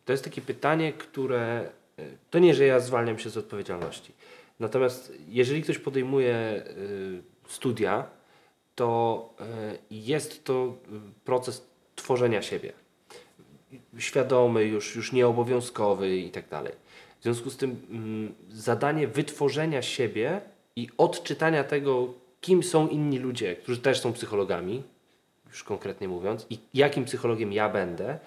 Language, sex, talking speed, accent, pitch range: Polish, male, 130 wpm, native, 110-140 Hz